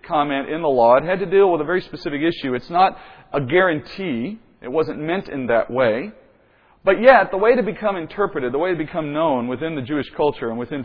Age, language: 40-59, English